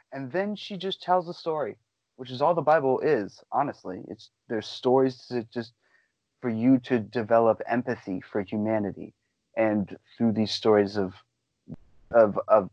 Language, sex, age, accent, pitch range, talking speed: English, male, 30-49, American, 115-160 Hz, 155 wpm